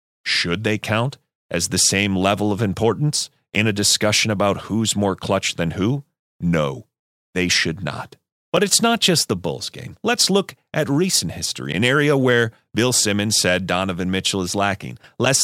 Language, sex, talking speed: English, male, 175 wpm